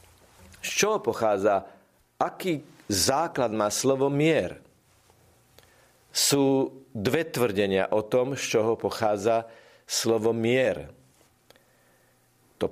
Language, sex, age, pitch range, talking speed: Slovak, male, 50-69, 105-135 Hz, 90 wpm